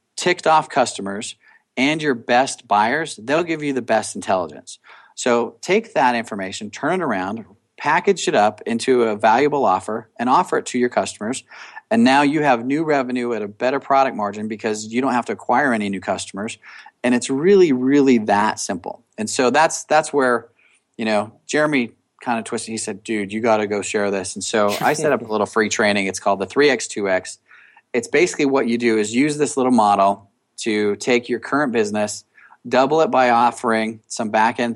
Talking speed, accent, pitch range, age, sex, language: 195 wpm, American, 105-125 Hz, 40-59, male, English